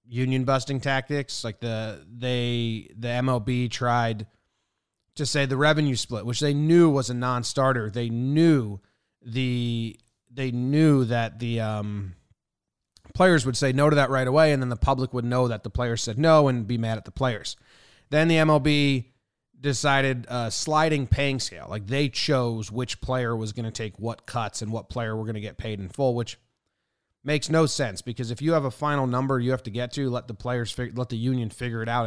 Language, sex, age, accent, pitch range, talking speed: English, male, 30-49, American, 115-135 Hz, 200 wpm